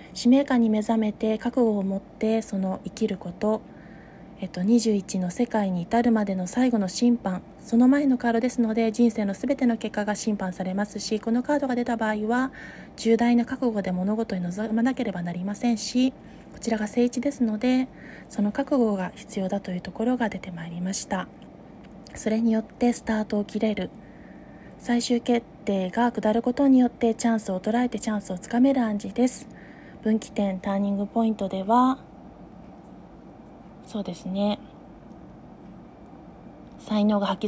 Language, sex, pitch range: Japanese, female, 200-240 Hz